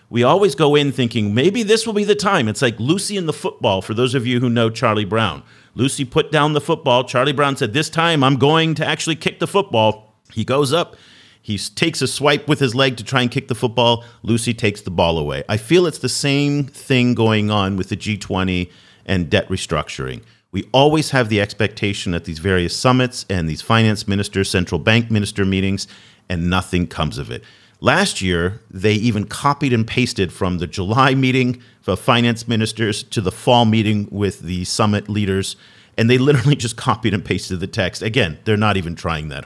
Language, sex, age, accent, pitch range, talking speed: English, male, 40-59, American, 100-135 Hz, 205 wpm